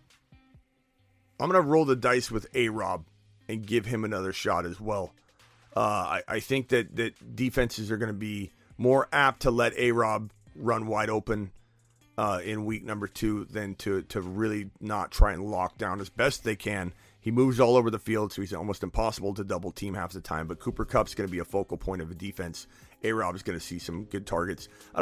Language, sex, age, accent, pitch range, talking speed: English, male, 30-49, American, 105-130 Hz, 210 wpm